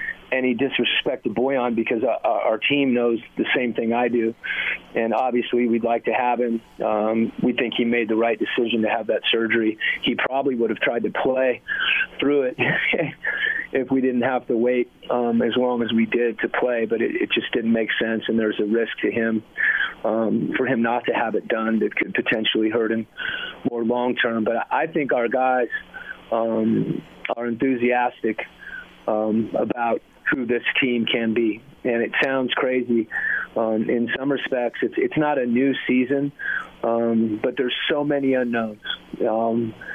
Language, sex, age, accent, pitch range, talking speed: English, male, 40-59, American, 115-130 Hz, 180 wpm